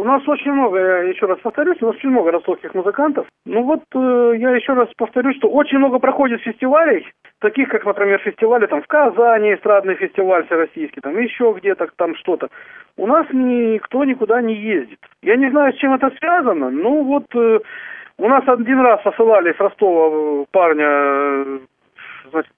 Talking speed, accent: 175 wpm, native